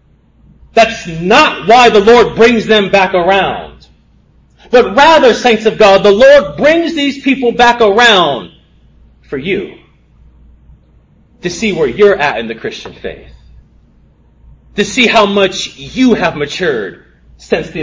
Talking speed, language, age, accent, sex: 140 wpm, English, 30-49, American, male